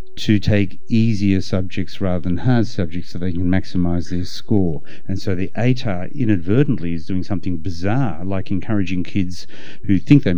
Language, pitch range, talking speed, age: English, 95-120 Hz, 170 wpm, 50-69